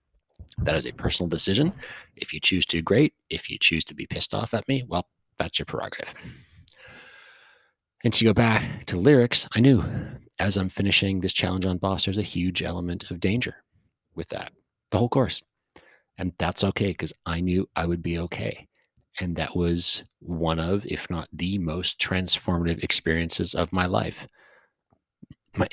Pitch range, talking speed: 85-100 Hz, 175 wpm